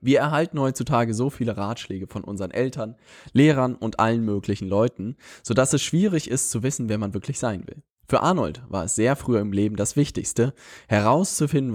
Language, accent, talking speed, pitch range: German, German, 190 wpm, 105-130 Hz